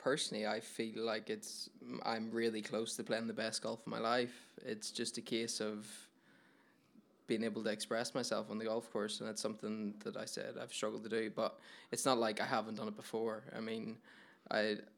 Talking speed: 210 wpm